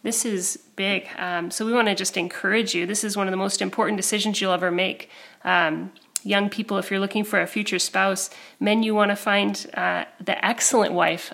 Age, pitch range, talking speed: 30-49, 190-215 Hz, 215 wpm